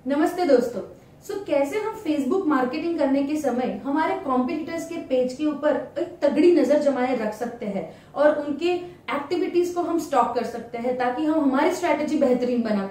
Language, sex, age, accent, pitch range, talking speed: Hindi, female, 30-49, native, 250-320 Hz, 180 wpm